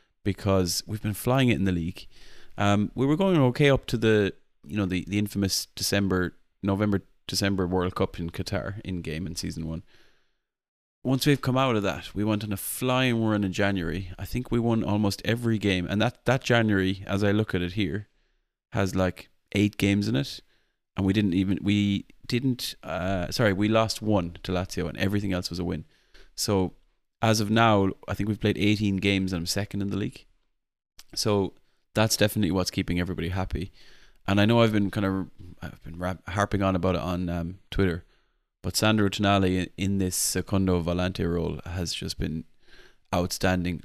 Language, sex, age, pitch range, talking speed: English, male, 20-39, 90-105 Hz, 190 wpm